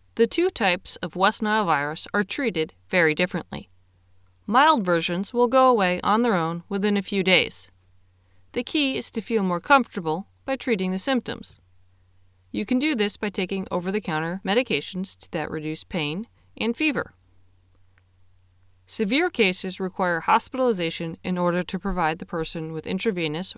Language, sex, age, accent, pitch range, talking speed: English, female, 30-49, American, 155-225 Hz, 150 wpm